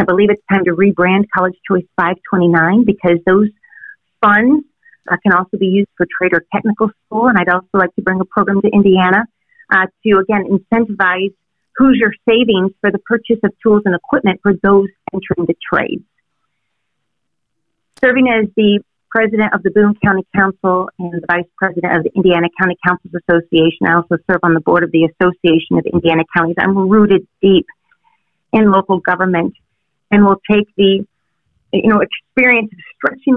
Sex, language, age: female, English, 40-59